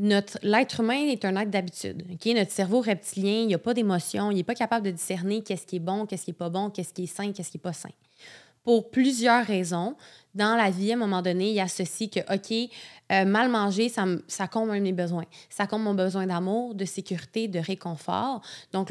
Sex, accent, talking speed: female, Canadian, 235 wpm